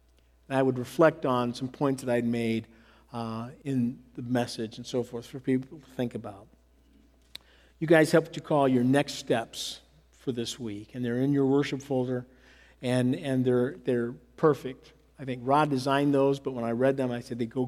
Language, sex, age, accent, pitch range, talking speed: English, male, 50-69, American, 120-165 Hz, 200 wpm